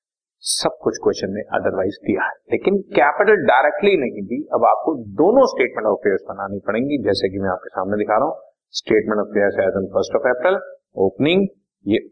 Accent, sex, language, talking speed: native, male, Hindi, 185 wpm